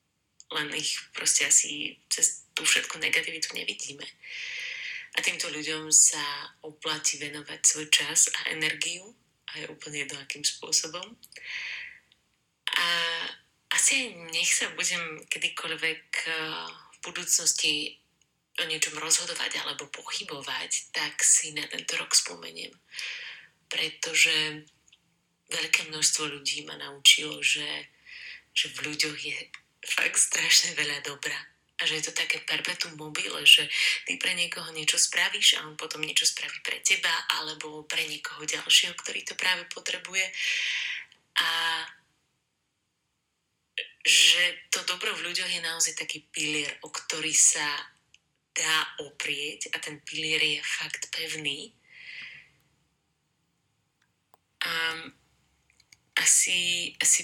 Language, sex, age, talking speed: Slovak, female, 30-49, 115 wpm